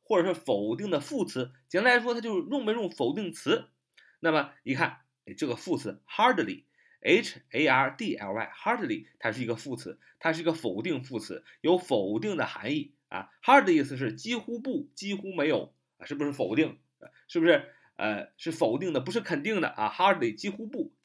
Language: Chinese